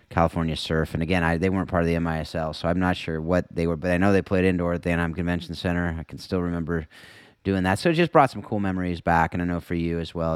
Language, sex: English, male